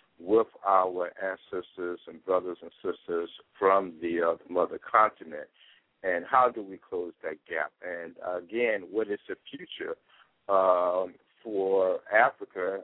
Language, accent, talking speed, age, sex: English, American, 135 wpm, 60-79, male